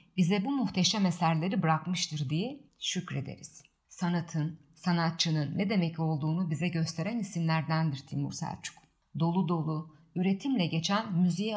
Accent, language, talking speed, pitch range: native, Turkish, 115 wpm, 160-215 Hz